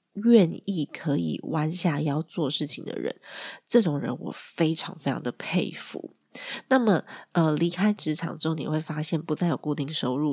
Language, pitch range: Chinese, 150-190 Hz